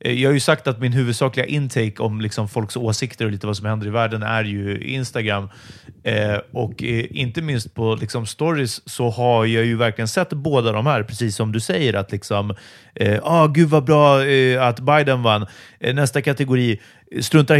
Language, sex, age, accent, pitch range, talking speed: Swedish, male, 30-49, native, 115-150 Hz, 200 wpm